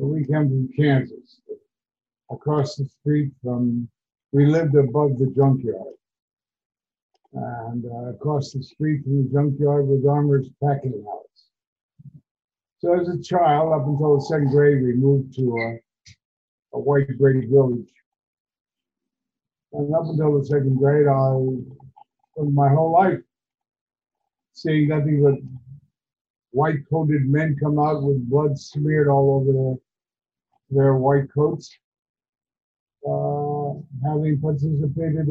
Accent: American